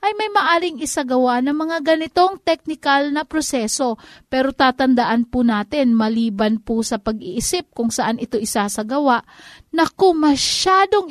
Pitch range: 250-335 Hz